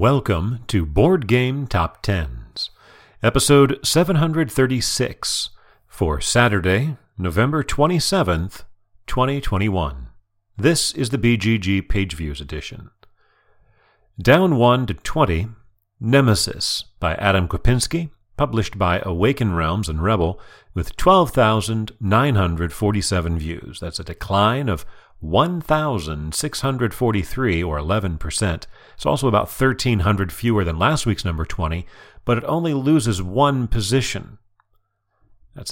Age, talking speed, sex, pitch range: 40-59, 100 wpm, male, 95-130 Hz